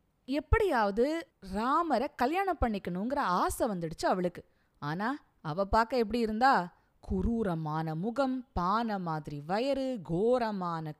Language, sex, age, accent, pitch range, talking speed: Tamil, female, 20-39, native, 160-235 Hz, 95 wpm